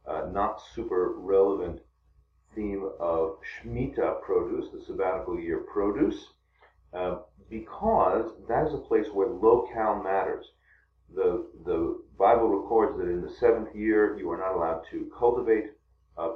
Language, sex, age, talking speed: English, male, 40-59, 135 wpm